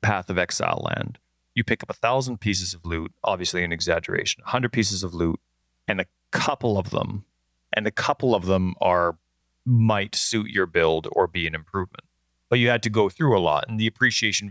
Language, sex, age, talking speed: English, male, 30-49, 205 wpm